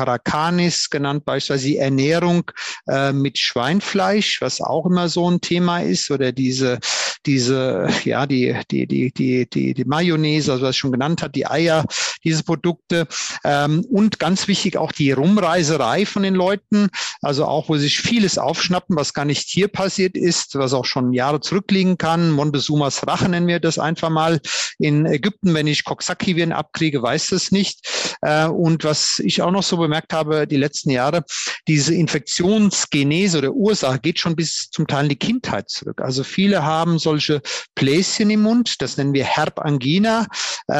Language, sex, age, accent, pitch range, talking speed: German, male, 50-69, German, 145-180 Hz, 170 wpm